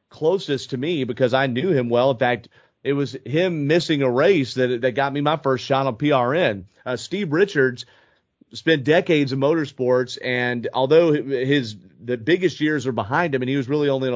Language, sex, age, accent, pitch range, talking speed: English, male, 30-49, American, 125-140 Hz, 205 wpm